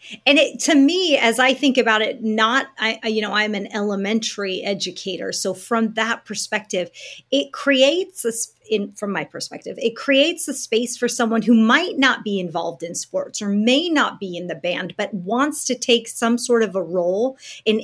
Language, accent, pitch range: English, American, 200-245 Hz